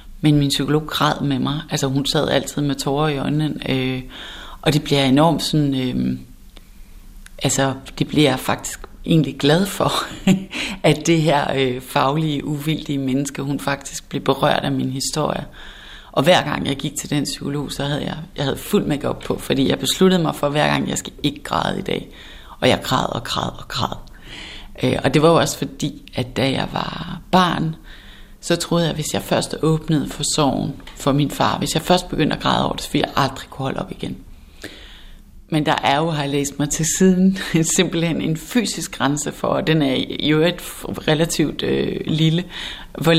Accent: native